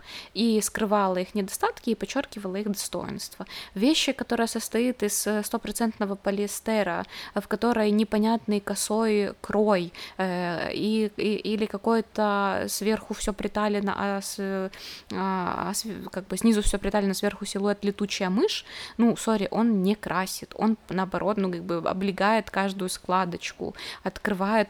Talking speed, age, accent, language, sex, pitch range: 130 wpm, 20-39, native, Russian, female, 180-210 Hz